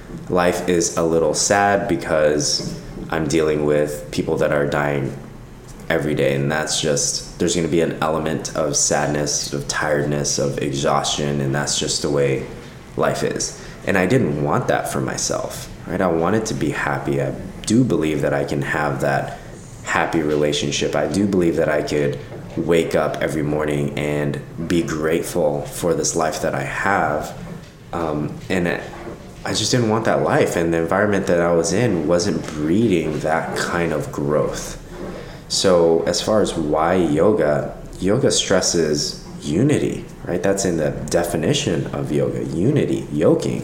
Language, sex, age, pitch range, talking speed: English, male, 20-39, 75-90 Hz, 160 wpm